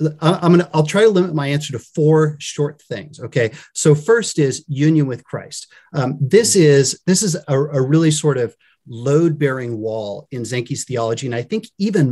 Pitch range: 120-155 Hz